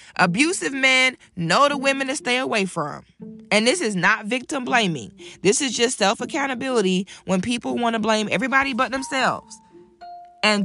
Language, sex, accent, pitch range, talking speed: English, female, American, 180-235 Hz, 160 wpm